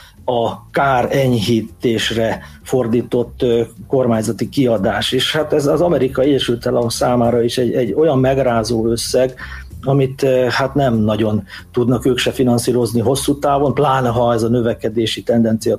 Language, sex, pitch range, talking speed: Hungarian, male, 120-145 Hz, 130 wpm